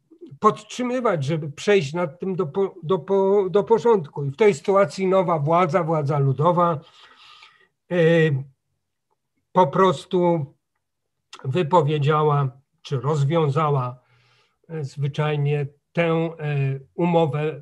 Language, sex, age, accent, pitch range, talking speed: Polish, male, 40-59, native, 140-175 Hz, 100 wpm